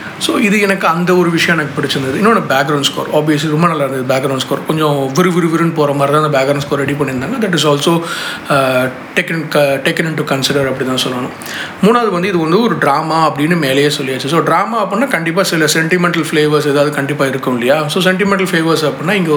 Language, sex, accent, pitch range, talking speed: Tamil, male, native, 145-185 Hz, 200 wpm